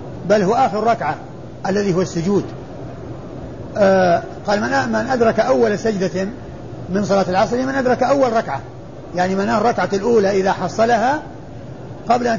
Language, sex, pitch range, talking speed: Arabic, male, 180-235 Hz, 135 wpm